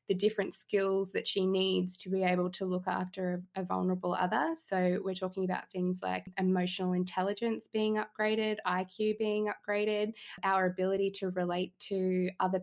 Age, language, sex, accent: 20-39, English, female, Australian